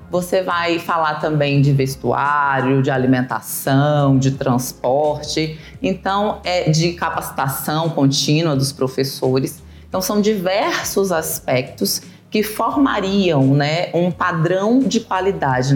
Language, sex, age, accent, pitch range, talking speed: Portuguese, female, 20-39, Brazilian, 150-205 Hz, 105 wpm